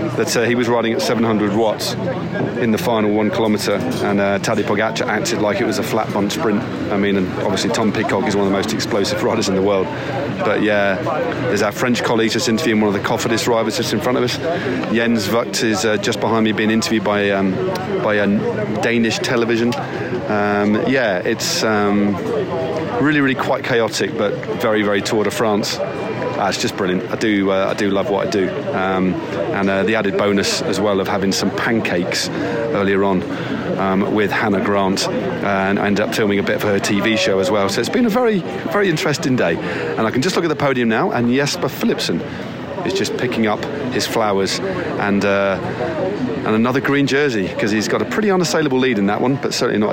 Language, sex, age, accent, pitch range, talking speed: English, male, 30-49, British, 100-115 Hz, 215 wpm